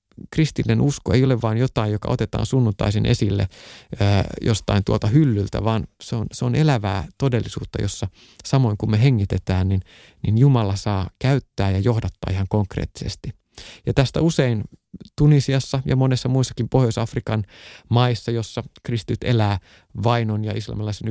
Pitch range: 105-130 Hz